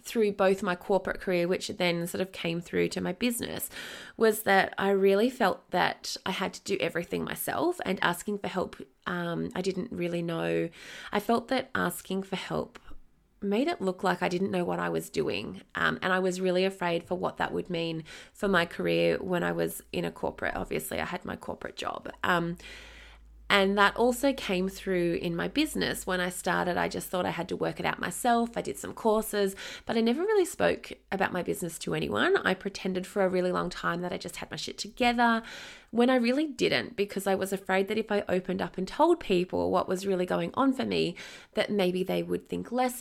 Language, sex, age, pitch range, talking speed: English, female, 20-39, 175-220 Hz, 220 wpm